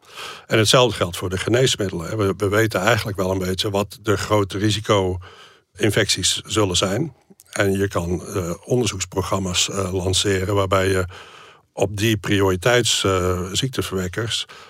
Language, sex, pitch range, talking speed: Dutch, male, 95-110 Hz, 115 wpm